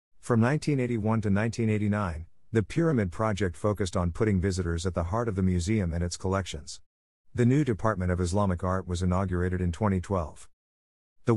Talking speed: 165 wpm